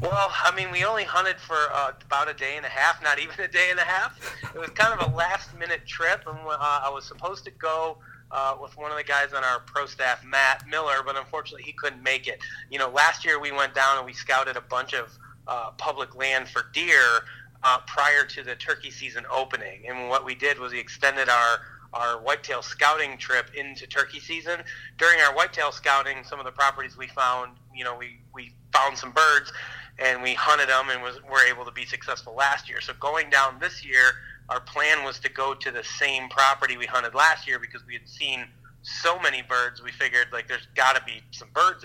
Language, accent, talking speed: English, American, 225 wpm